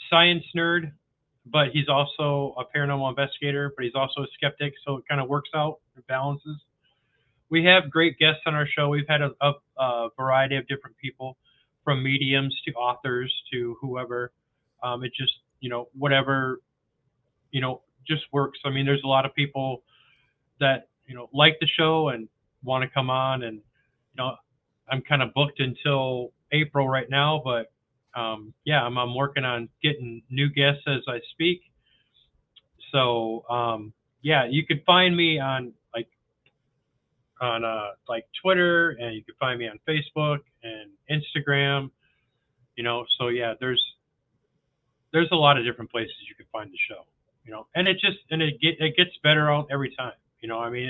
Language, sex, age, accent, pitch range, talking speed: English, male, 20-39, American, 125-145 Hz, 175 wpm